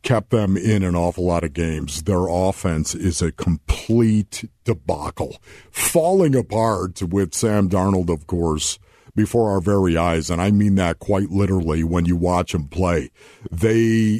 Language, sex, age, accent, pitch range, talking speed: English, male, 50-69, American, 95-125 Hz, 155 wpm